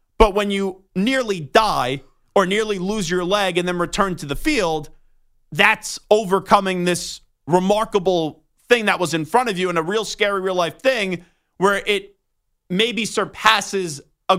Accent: American